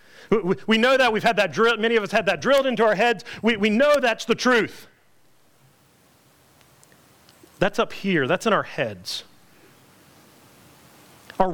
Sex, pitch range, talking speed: male, 140-220 Hz, 155 wpm